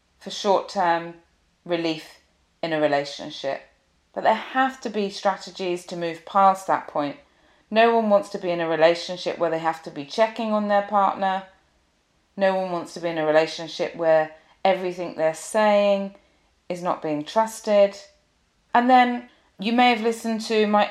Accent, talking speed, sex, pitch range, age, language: British, 165 wpm, female, 165-210 Hz, 30-49, English